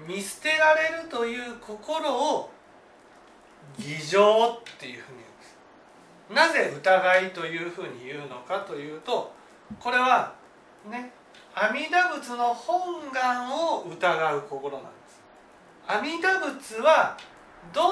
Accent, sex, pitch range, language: native, male, 185-300 Hz, Japanese